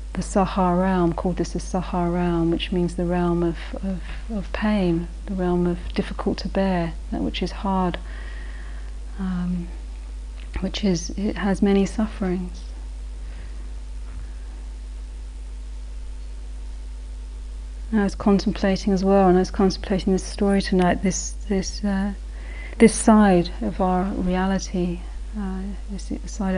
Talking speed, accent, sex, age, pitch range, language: 130 wpm, British, female, 40-59, 165-195 Hz, English